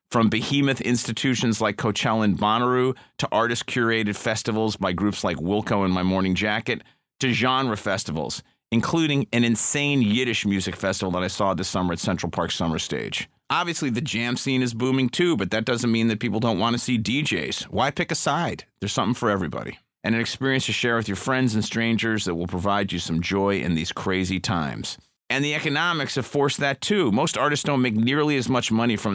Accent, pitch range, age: American, 95-125 Hz, 30-49